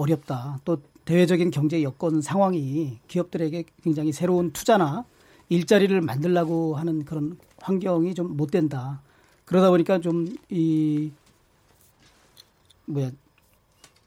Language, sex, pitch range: Korean, male, 150-190 Hz